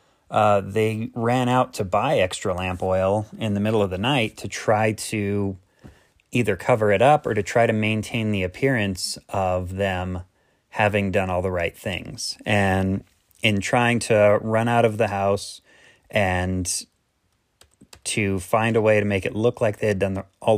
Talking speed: 175 wpm